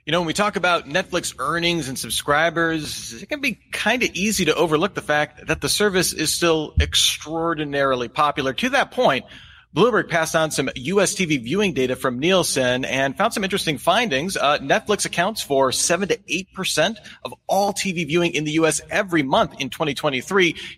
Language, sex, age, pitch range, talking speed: English, male, 30-49, 135-190 Hz, 185 wpm